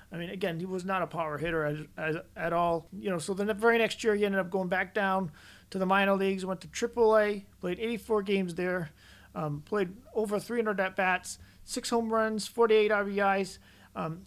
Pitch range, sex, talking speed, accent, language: 180-215 Hz, male, 205 wpm, American, English